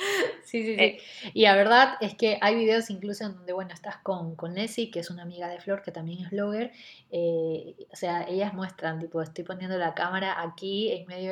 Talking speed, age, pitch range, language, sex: 220 wpm, 20-39, 190-230 Hz, Spanish, female